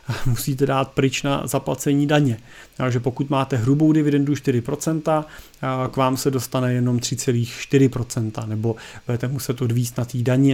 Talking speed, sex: 140 wpm, male